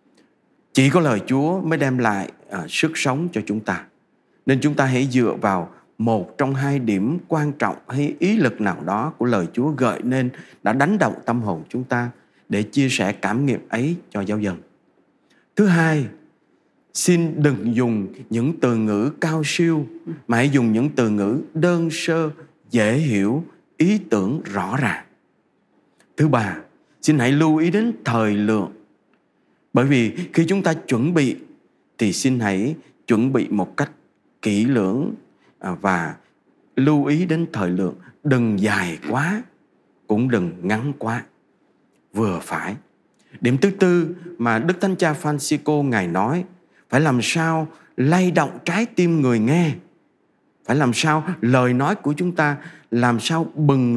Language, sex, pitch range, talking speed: English, male, 115-165 Hz, 160 wpm